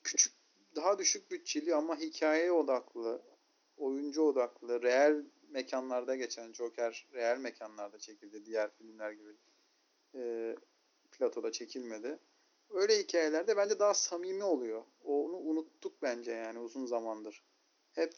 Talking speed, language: 115 wpm, Turkish